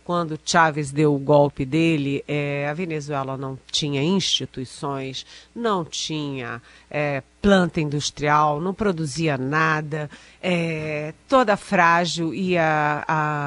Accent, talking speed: Brazilian, 115 wpm